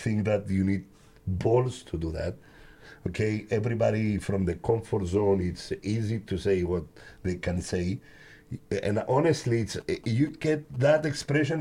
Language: Greek